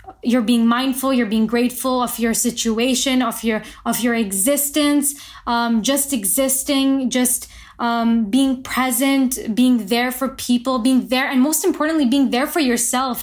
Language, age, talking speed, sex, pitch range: English, 20-39, 155 wpm, female, 245-285 Hz